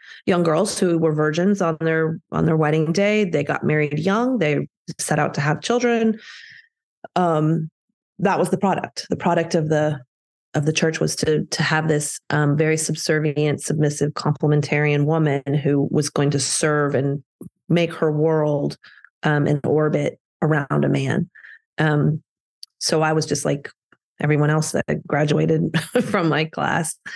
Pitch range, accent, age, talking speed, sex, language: 145-165 Hz, American, 30-49, 160 wpm, female, English